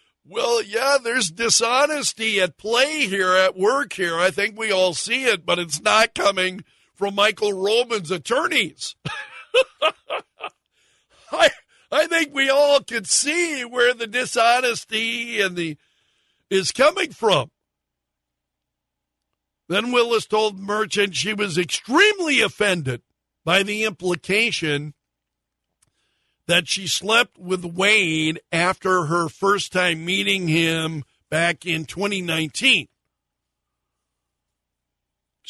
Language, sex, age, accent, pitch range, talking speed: English, male, 60-79, American, 160-220 Hz, 110 wpm